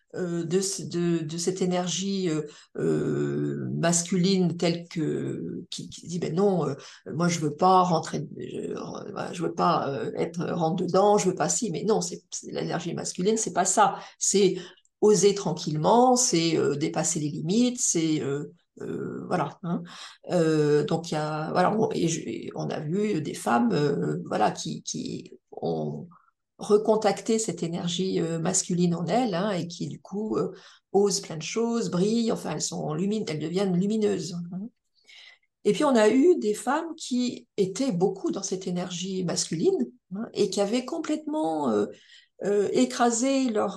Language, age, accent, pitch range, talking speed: French, 50-69, French, 170-215 Hz, 160 wpm